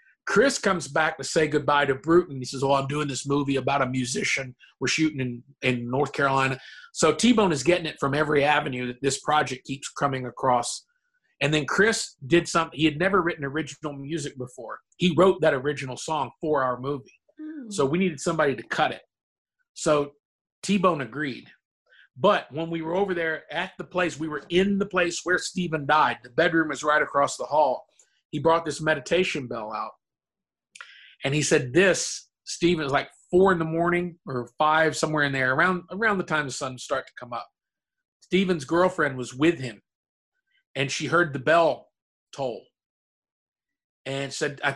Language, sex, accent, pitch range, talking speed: English, male, American, 140-175 Hz, 185 wpm